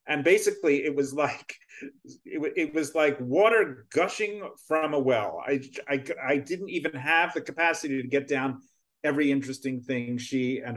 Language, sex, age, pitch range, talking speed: English, male, 40-59, 130-170 Hz, 175 wpm